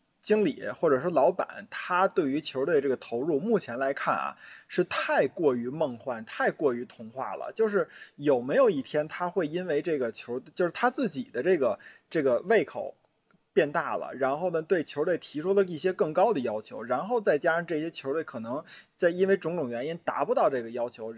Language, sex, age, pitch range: Chinese, male, 20-39, 130-210 Hz